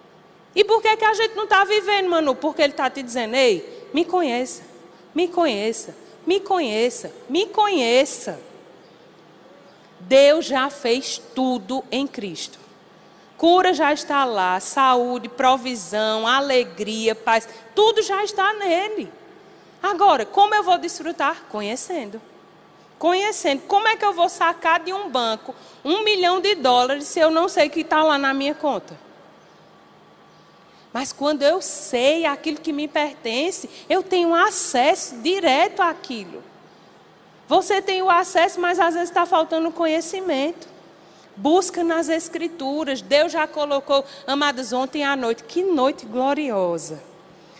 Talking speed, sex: 135 wpm, female